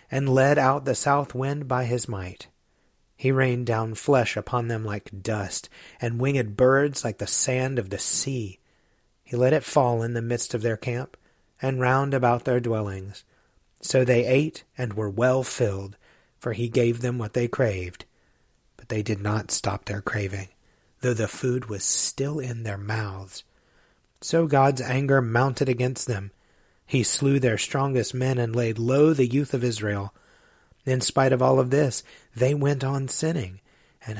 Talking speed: 175 wpm